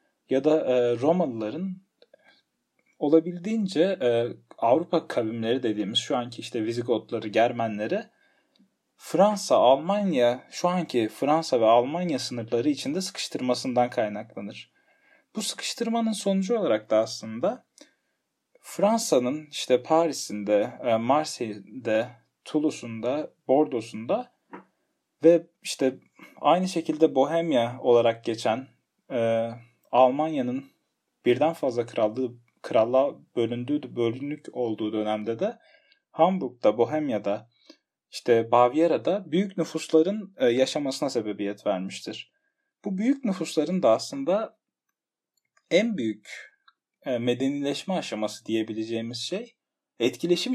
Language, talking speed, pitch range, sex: Turkish, 90 wpm, 120-200 Hz, male